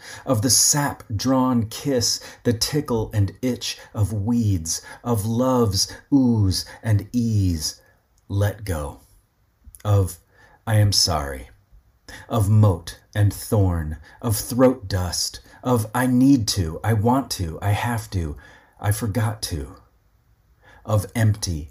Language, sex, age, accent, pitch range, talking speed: English, male, 40-59, American, 95-120 Hz, 120 wpm